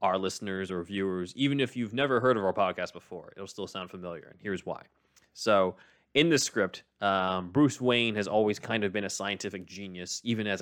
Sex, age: male, 20-39